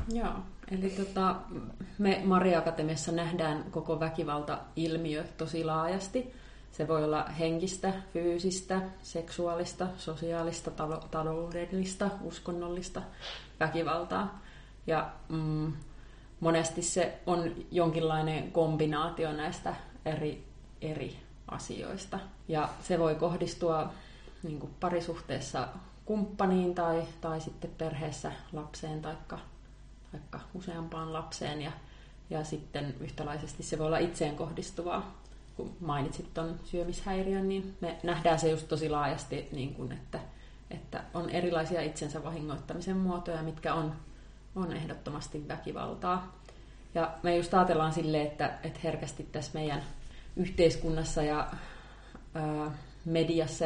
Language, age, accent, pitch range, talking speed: Finnish, 30-49, native, 155-175 Hz, 95 wpm